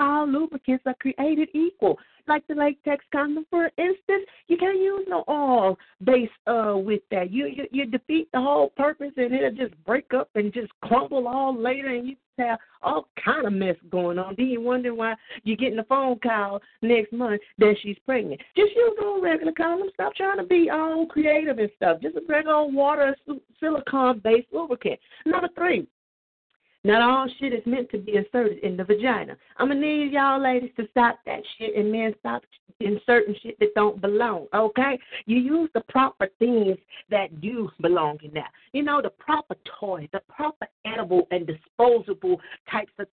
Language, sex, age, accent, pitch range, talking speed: English, female, 40-59, American, 210-300 Hz, 190 wpm